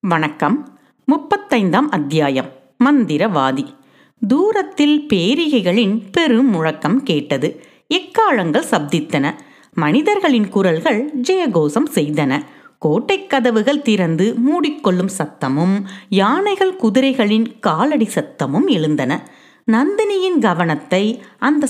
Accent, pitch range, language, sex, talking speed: native, 180-275 Hz, Tamil, female, 75 wpm